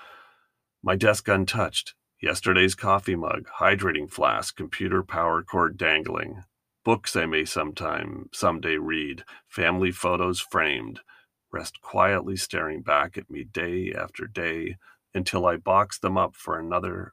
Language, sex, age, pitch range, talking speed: English, male, 40-59, 90-100 Hz, 130 wpm